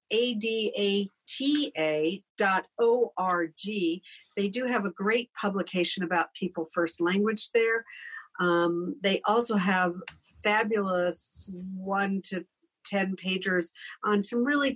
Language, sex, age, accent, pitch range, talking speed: English, female, 50-69, American, 180-235 Hz, 110 wpm